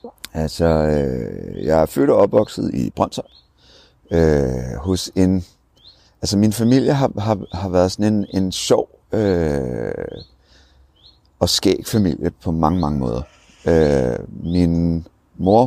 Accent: Danish